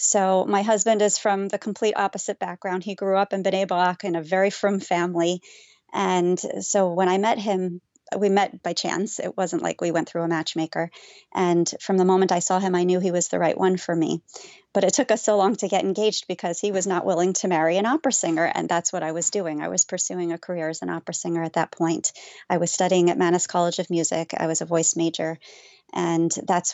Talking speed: 240 wpm